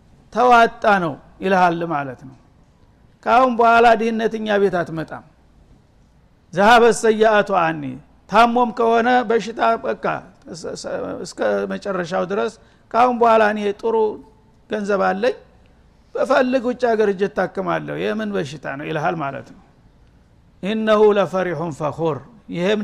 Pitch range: 190-235 Hz